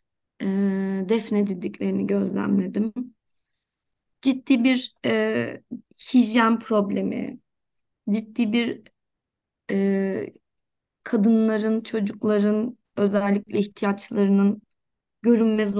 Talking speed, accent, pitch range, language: 60 wpm, native, 195-230 Hz, Turkish